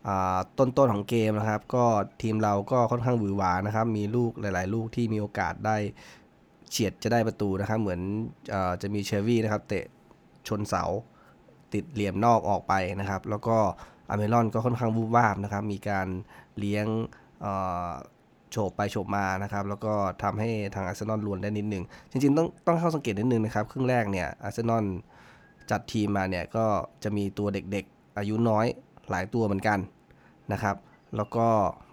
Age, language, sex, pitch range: 20-39, Thai, male, 100-115 Hz